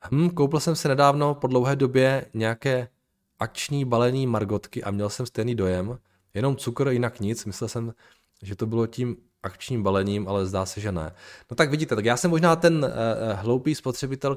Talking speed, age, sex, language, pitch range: 190 wpm, 20-39, male, Czech, 105-140 Hz